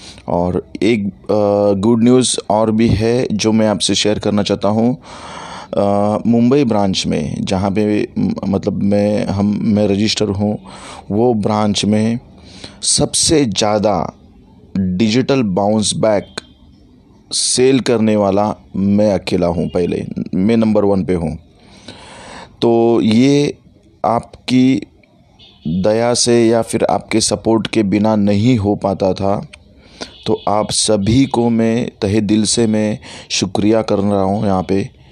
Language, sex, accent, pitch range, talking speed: Hindi, male, native, 100-110 Hz, 130 wpm